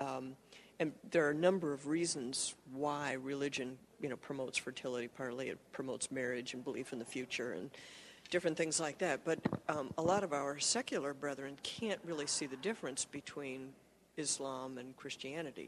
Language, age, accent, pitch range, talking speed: English, 50-69, American, 135-170 Hz, 170 wpm